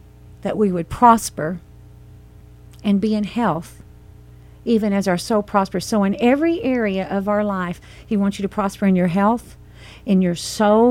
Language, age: English, 50-69